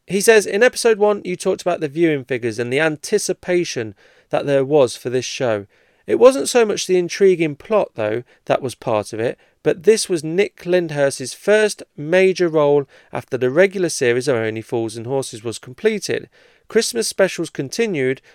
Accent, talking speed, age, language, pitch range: British, 180 wpm, 30-49, English, 120-180 Hz